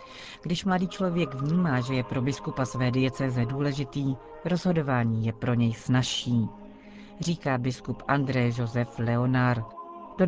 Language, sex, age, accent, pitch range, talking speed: Czech, female, 40-59, native, 125-155 Hz, 130 wpm